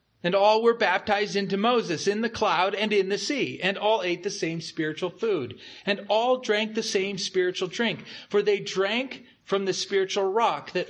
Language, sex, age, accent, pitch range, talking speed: English, male, 40-59, American, 170-220 Hz, 195 wpm